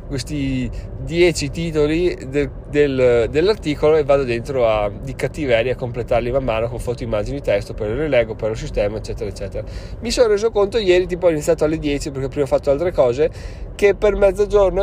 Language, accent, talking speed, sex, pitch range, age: Italian, native, 190 wpm, male, 125-155 Hz, 20-39